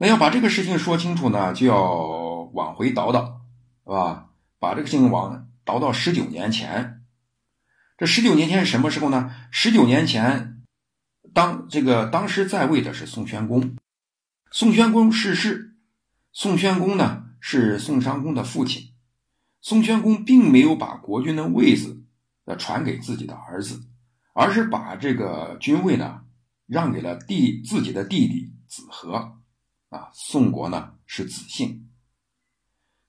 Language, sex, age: Chinese, male, 60-79